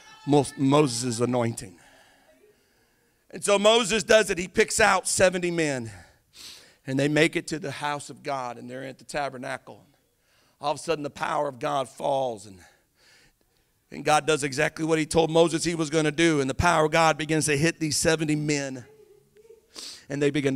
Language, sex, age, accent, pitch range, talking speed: English, male, 50-69, American, 140-185 Hz, 185 wpm